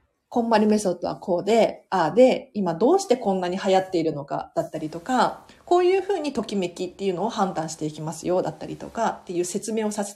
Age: 40-59